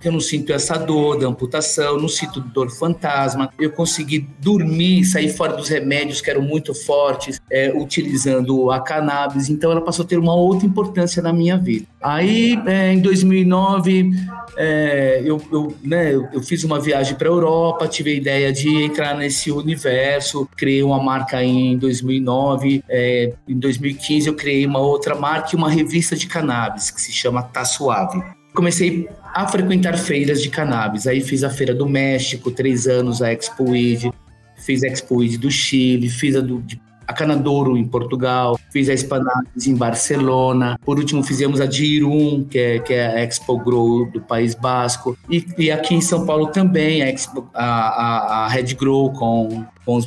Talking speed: 170 wpm